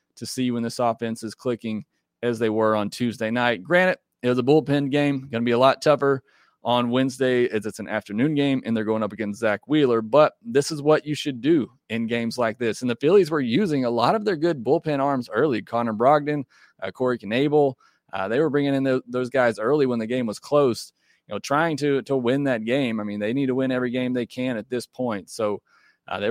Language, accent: English, American